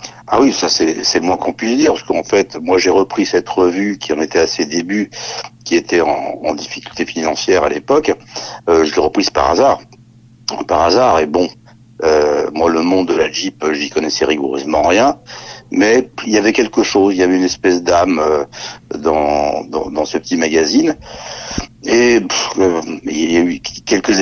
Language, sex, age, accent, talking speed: French, male, 60-79, French, 195 wpm